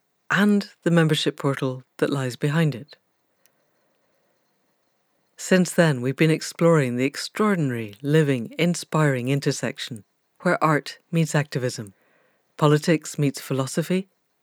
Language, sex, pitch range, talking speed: English, female, 135-180 Hz, 105 wpm